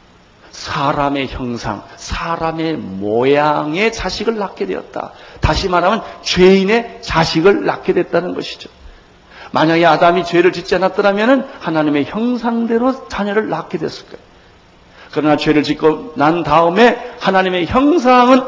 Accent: native